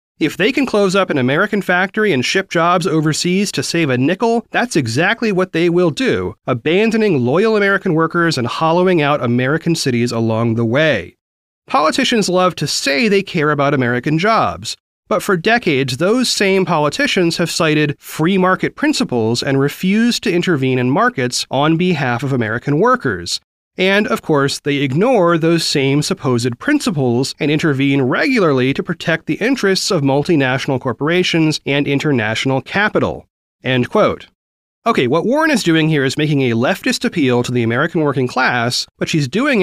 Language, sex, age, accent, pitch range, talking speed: English, male, 30-49, American, 135-185 Hz, 165 wpm